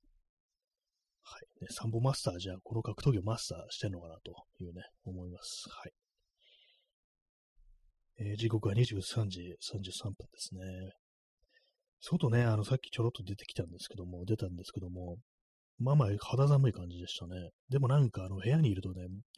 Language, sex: Japanese, male